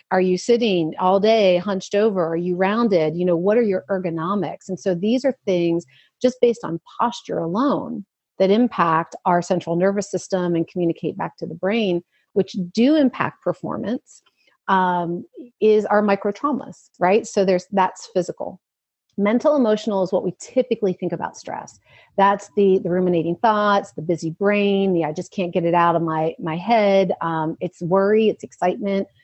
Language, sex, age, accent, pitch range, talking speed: English, female, 40-59, American, 170-215 Hz, 170 wpm